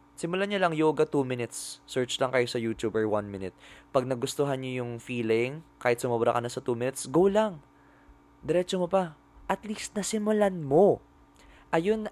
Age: 20-39